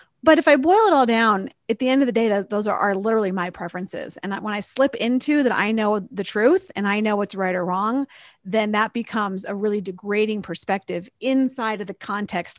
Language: English